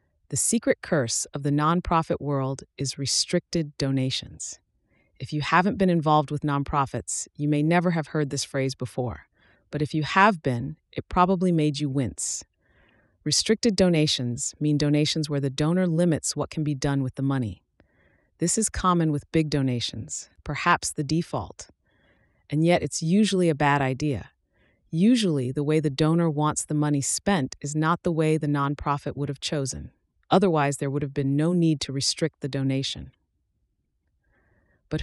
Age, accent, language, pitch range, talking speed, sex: 30-49, American, English, 135-165 Hz, 165 wpm, female